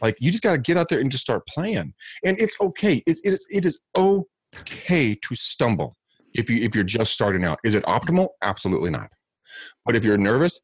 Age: 30-49